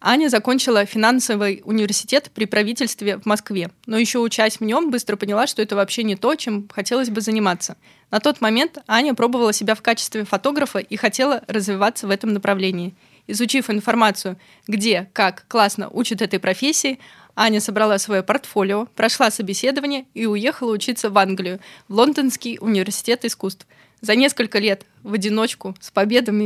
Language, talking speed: Russian, 155 wpm